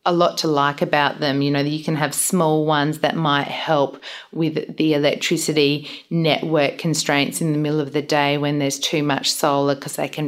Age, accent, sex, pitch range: 40-59, Australian, female, 150-165 Hz